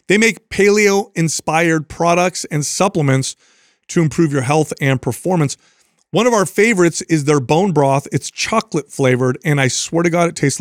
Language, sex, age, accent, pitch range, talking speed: English, male, 30-49, American, 145-185 Hz, 165 wpm